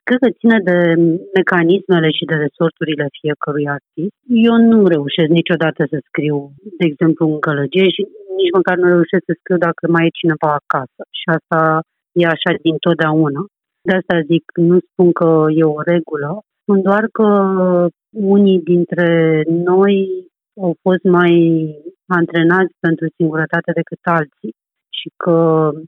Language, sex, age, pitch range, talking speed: Romanian, female, 30-49, 160-190 Hz, 145 wpm